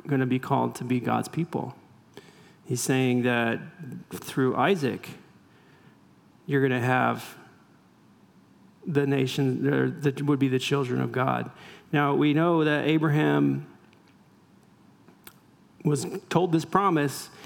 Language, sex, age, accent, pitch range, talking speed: English, male, 40-59, American, 130-155 Hz, 120 wpm